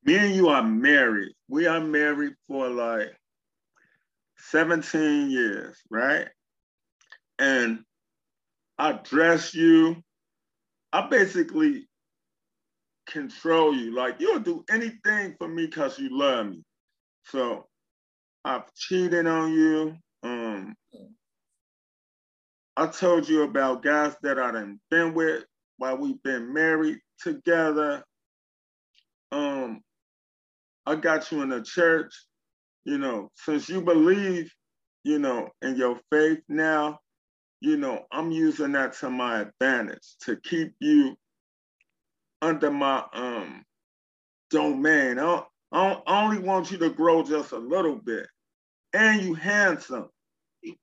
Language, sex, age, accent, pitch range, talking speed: English, male, 30-49, American, 150-210 Hz, 115 wpm